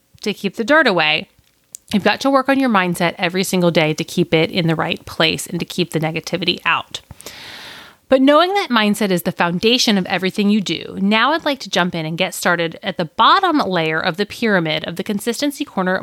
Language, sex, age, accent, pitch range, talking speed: English, female, 30-49, American, 175-235 Hz, 220 wpm